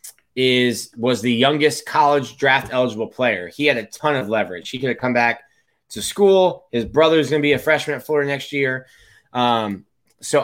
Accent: American